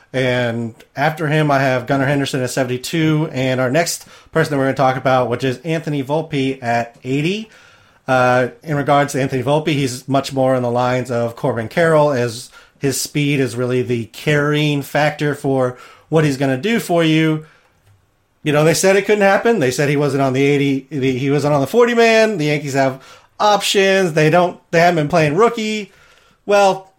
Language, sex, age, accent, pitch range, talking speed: English, male, 30-49, American, 130-170 Hz, 195 wpm